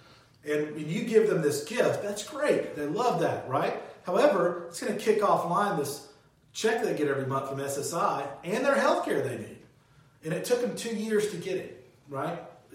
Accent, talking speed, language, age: American, 205 wpm, English, 40-59